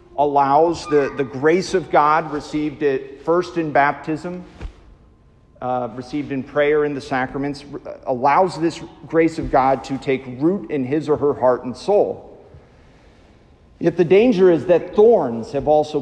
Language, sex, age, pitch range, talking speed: English, male, 50-69, 125-155 Hz, 155 wpm